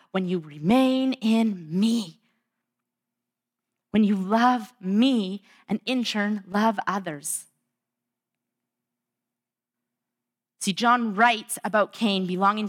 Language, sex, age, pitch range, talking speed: English, female, 30-49, 165-215 Hz, 95 wpm